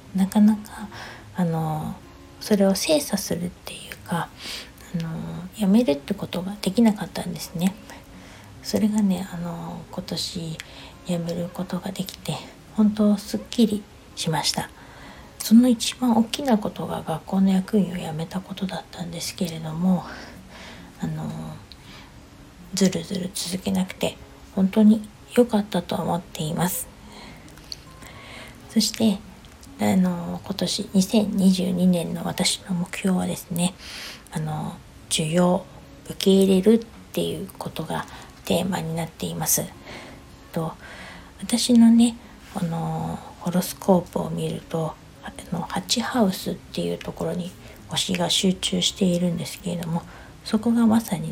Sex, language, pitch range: female, Japanese, 170-205 Hz